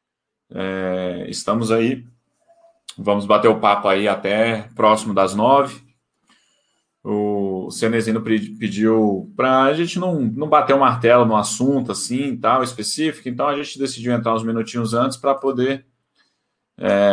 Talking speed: 140 wpm